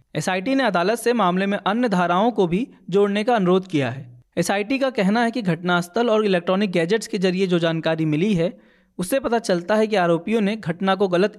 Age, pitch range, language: 20-39, 175-220 Hz, Hindi